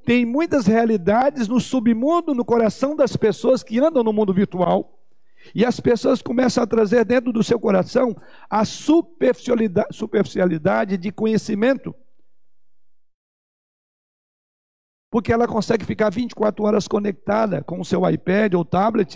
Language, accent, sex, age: Portuguese, Brazilian, male, 60-79